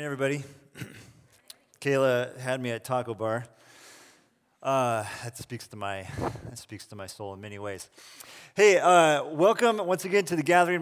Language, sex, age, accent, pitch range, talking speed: English, male, 30-49, American, 130-165 Hz, 155 wpm